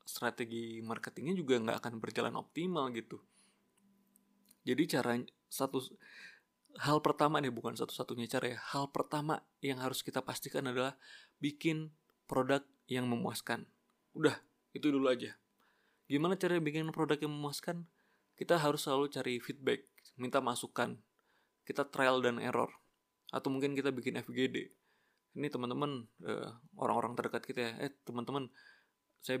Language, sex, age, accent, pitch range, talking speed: Indonesian, male, 20-39, native, 125-150 Hz, 130 wpm